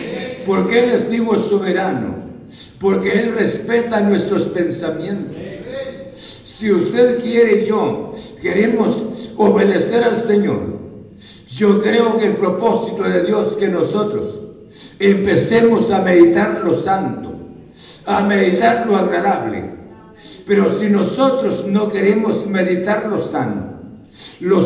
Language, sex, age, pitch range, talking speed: Spanish, male, 60-79, 200-230 Hz, 110 wpm